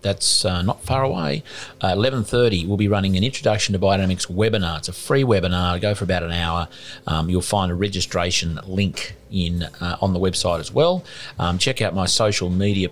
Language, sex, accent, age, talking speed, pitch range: English, male, Australian, 40-59, 205 wpm, 85-105 Hz